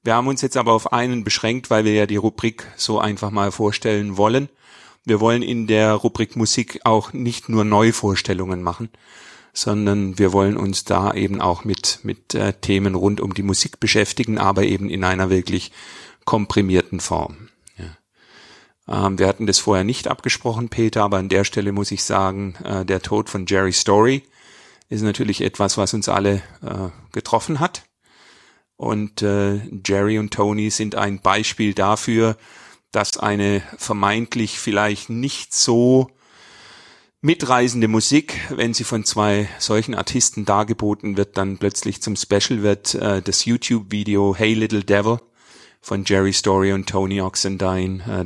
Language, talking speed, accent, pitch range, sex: German, 155 wpm, German, 95-110 Hz, male